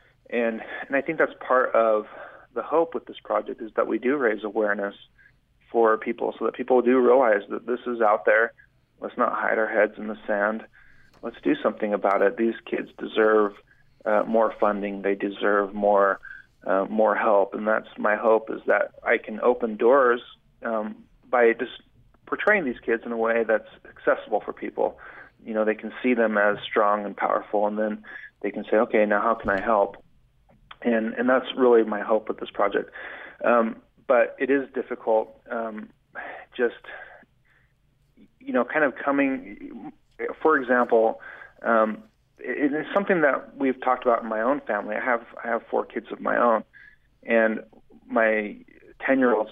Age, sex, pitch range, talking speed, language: 30-49, male, 105-125 Hz, 180 wpm, English